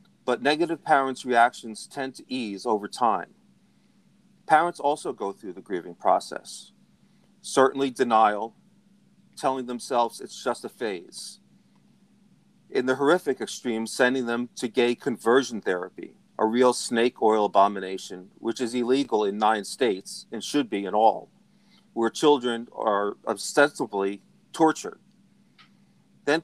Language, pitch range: English, 115-150 Hz